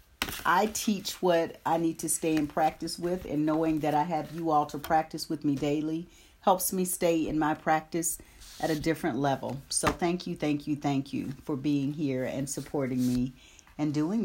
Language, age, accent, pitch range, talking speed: English, 40-59, American, 140-175 Hz, 200 wpm